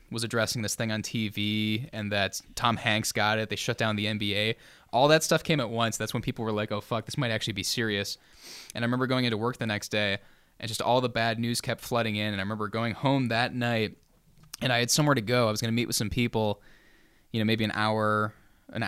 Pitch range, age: 105-120 Hz, 10-29